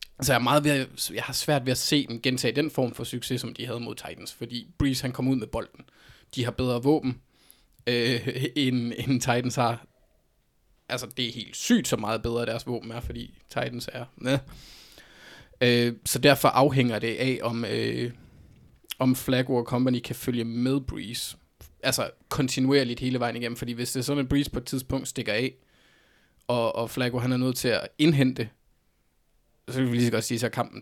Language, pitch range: Danish, 120-130 Hz